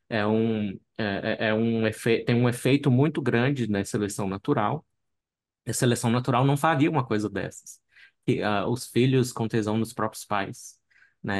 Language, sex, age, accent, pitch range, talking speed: Portuguese, male, 20-39, Brazilian, 105-125 Hz, 175 wpm